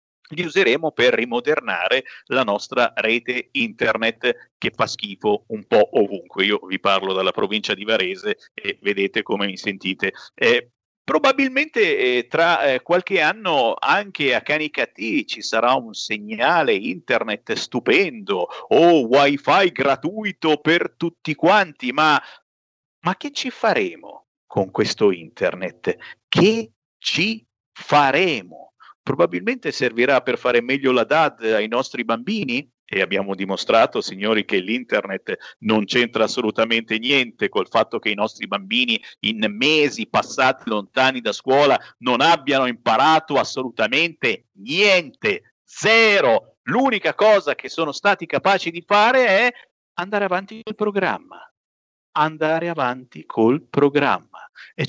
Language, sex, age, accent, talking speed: Italian, male, 50-69, native, 125 wpm